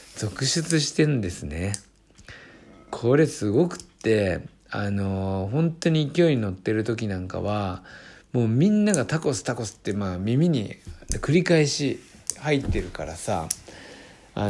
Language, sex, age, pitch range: Japanese, male, 60-79, 95-135 Hz